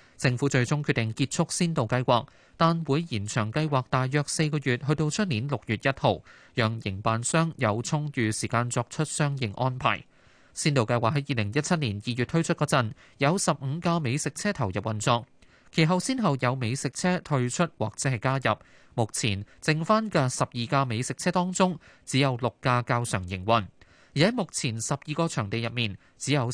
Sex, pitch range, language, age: male, 110-155 Hz, Chinese, 20-39